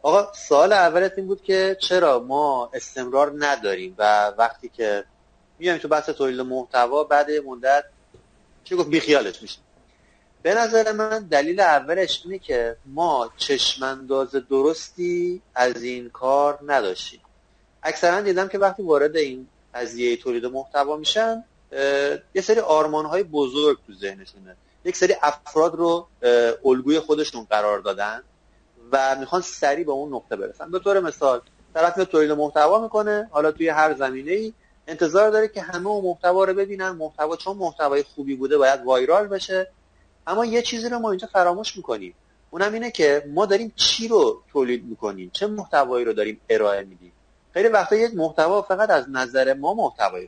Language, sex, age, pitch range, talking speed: Persian, male, 30-49, 135-195 Hz, 160 wpm